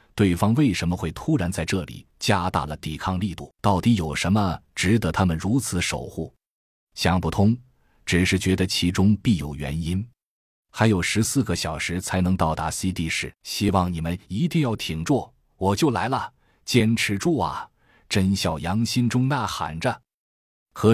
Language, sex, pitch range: Chinese, male, 85-110 Hz